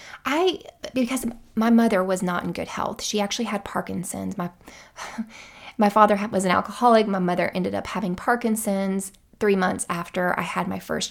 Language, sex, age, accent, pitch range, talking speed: English, female, 20-39, American, 195-245 Hz, 175 wpm